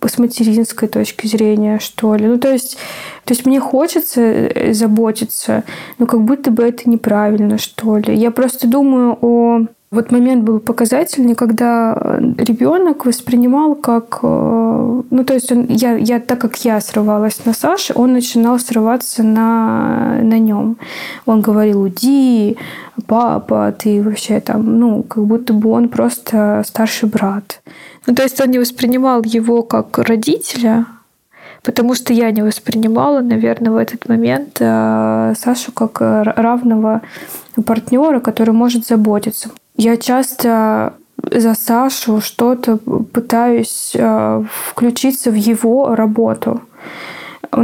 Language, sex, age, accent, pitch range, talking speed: Russian, female, 20-39, native, 220-245 Hz, 130 wpm